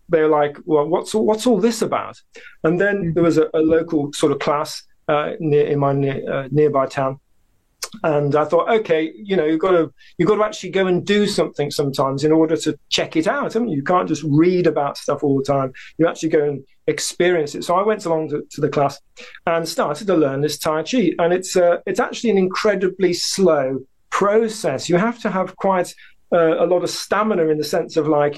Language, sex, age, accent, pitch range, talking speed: English, male, 40-59, British, 150-190 Hz, 225 wpm